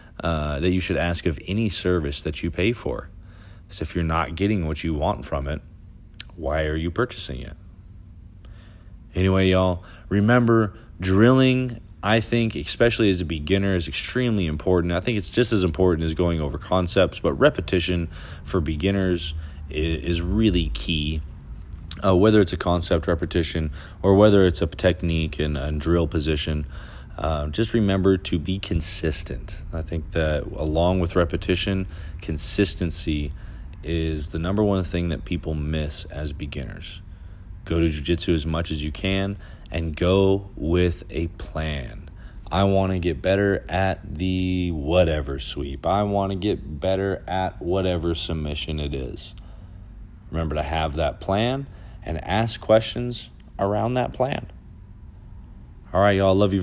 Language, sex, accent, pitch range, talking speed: English, male, American, 80-95 Hz, 155 wpm